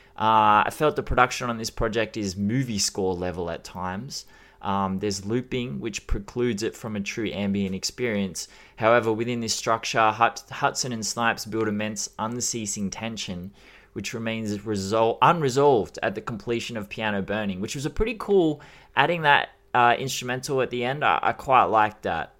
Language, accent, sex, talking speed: English, Australian, male, 170 wpm